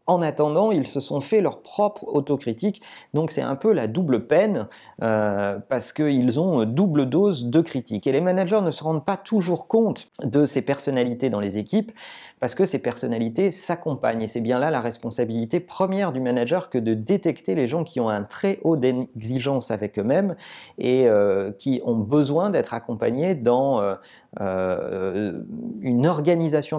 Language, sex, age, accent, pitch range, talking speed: French, male, 40-59, French, 120-175 Hz, 175 wpm